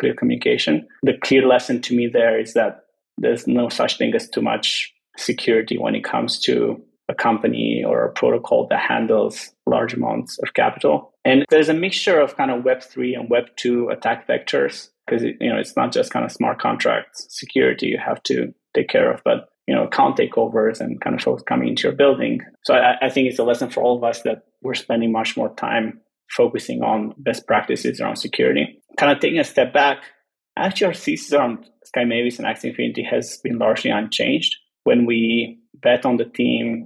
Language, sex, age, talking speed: English, male, 20-39, 200 wpm